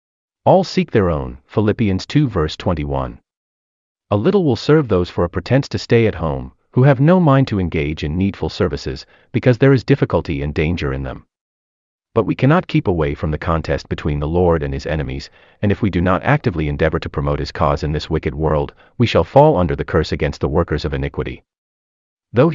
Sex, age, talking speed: male, 30-49, 210 wpm